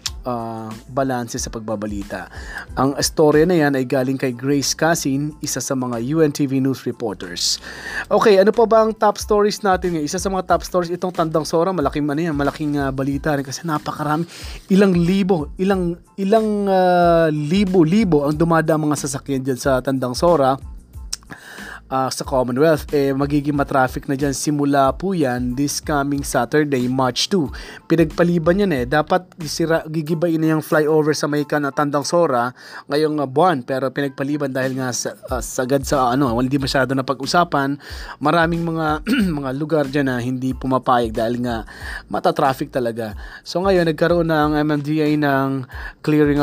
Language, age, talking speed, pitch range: Filipino, 20-39, 160 wpm, 135-165 Hz